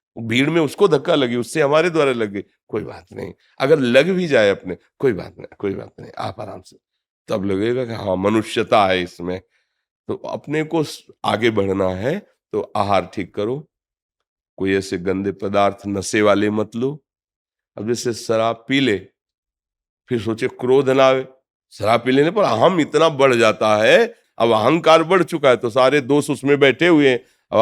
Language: Hindi